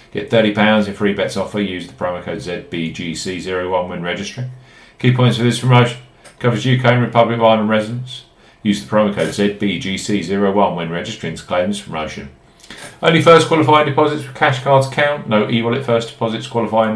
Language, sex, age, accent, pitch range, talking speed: English, male, 40-59, British, 100-125 Hz, 175 wpm